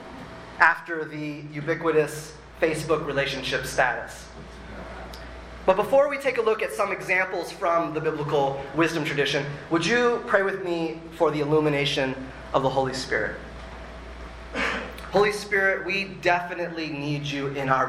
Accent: American